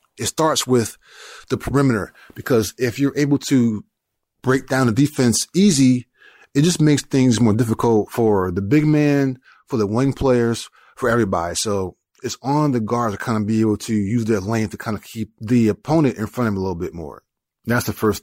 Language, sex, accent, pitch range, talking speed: English, male, American, 100-125 Hz, 205 wpm